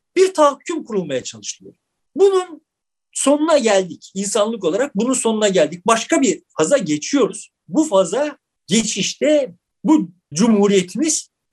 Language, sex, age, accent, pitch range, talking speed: Turkish, male, 50-69, native, 185-285 Hz, 110 wpm